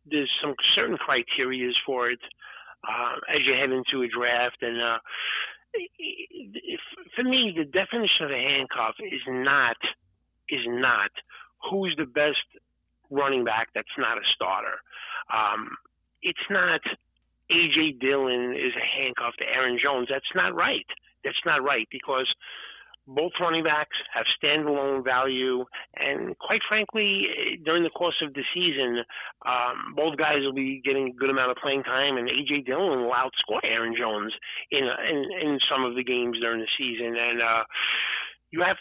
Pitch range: 120-155 Hz